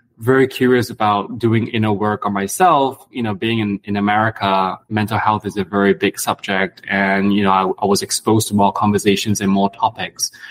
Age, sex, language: 20-39, male, English